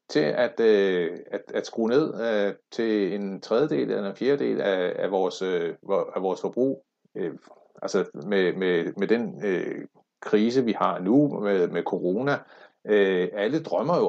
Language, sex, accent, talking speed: Danish, male, native, 165 wpm